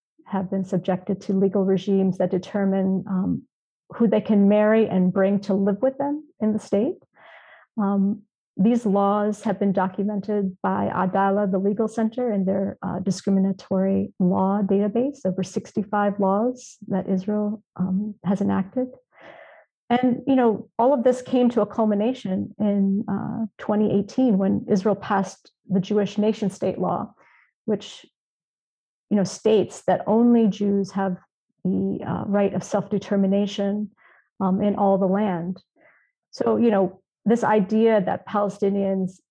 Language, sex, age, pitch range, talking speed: English, female, 40-59, 190-215 Hz, 140 wpm